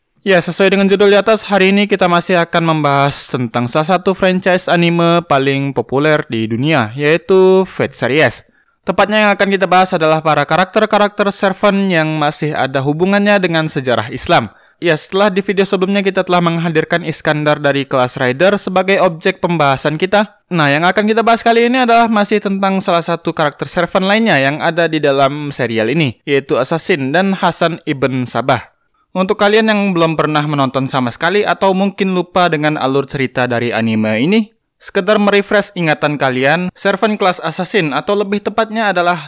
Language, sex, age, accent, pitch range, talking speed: Indonesian, male, 20-39, native, 140-195 Hz, 170 wpm